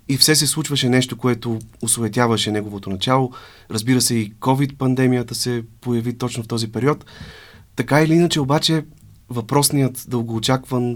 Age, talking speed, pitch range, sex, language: 30-49, 135 wpm, 110-130 Hz, male, Bulgarian